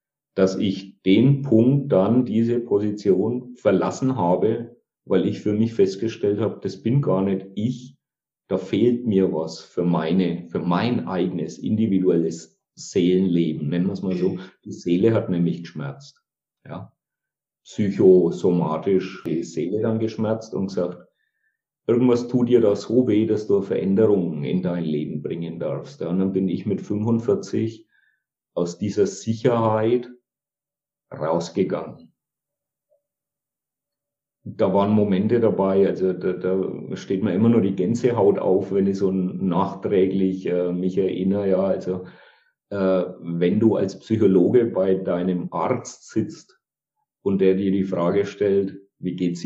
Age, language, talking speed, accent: 50-69, German, 140 wpm, German